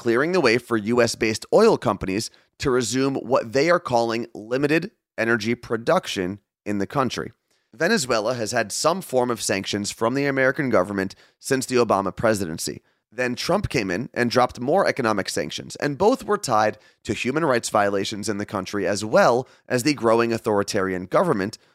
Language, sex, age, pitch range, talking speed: English, male, 30-49, 105-135 Hz, 170 wpm